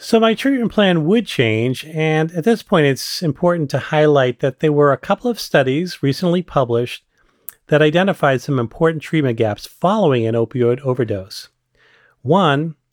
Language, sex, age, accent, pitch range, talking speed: English, male, 40-59, American, 120-160 Hz, 160 wpm